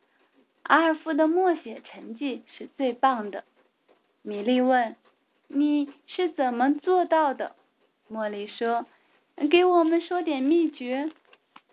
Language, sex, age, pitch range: Chinese, female, 20-39, 235-305 Hz